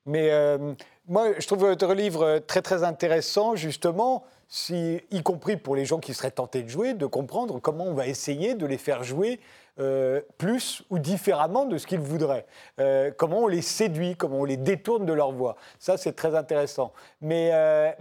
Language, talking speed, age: French, 190 wpm, 40-59